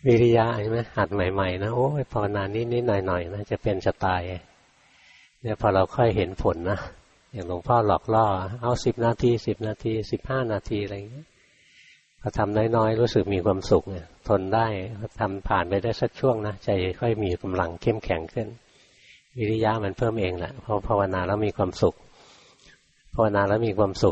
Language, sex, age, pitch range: Thai, male, 60-79, 95-115 Hz